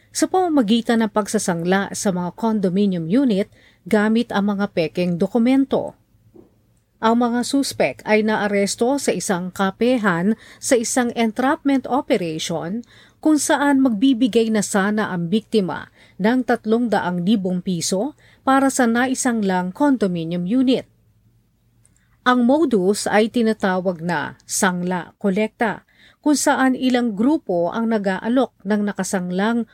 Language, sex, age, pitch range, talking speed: Filipino, female, 40-59, 185-240 Hz, 115 wpm